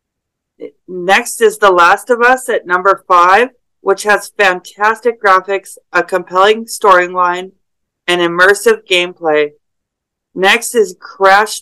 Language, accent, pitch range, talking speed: English, American, 180-220 Hz, 115 wpm